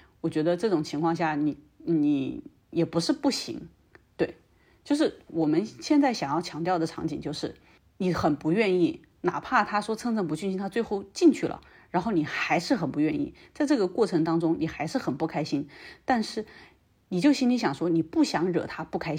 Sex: female